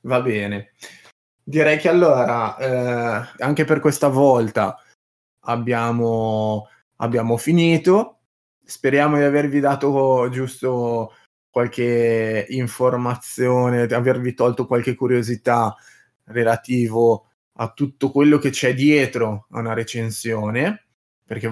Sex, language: male, Italian